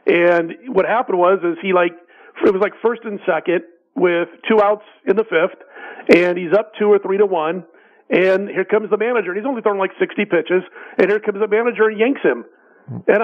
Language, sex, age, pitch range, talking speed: English, male, 40-59, 180-225 Hz, 220 wpm